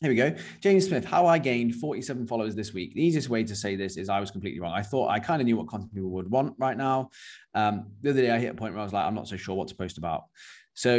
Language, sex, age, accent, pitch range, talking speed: English, male, 20-39, British, 95-120 Hz, 310 wpm